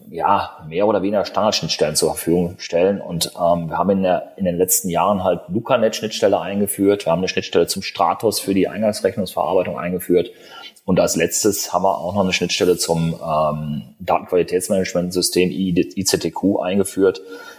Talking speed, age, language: 155 wpm, 30-49, German